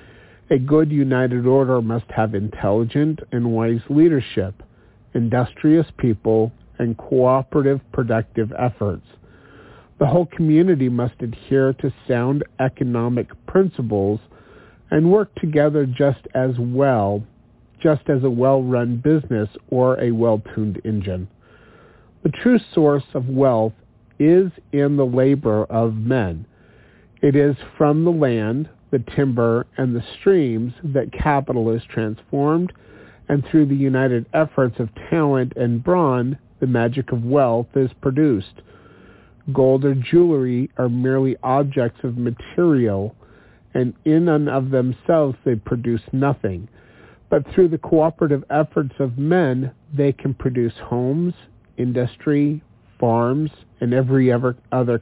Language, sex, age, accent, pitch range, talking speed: English, male, 50-69, American, 115-145 Hz, 120 wpm